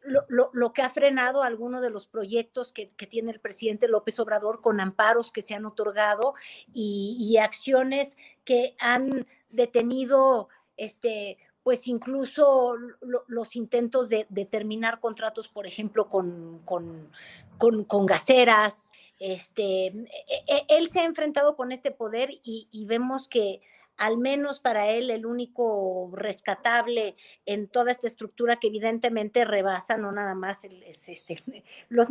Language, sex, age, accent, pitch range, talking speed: Spanish, female, 50-69, Mexican, 210-245 Hz, 145 wpm